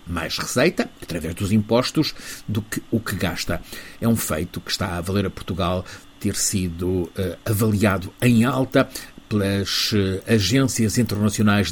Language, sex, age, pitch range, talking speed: Portuguese, male, 50-69, 95-120 Hz, 140 wpm